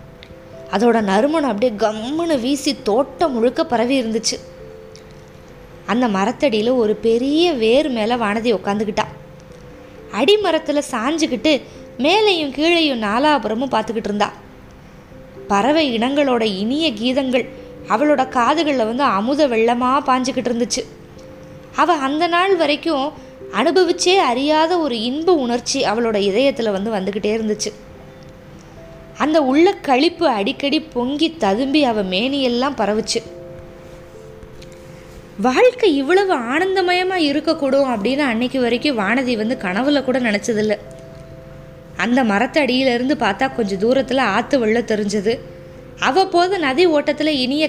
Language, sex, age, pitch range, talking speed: Tamil, female, 20-39, 225-300 Hz, 100 wpm